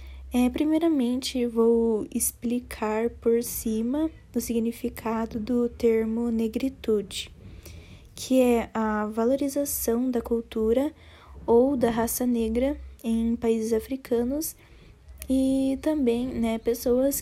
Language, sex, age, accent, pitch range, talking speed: Portuguese, female, 10-29, Brazilian, 220-250 Hz, 95 wpm